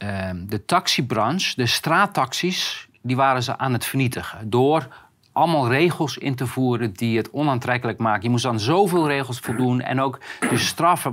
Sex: male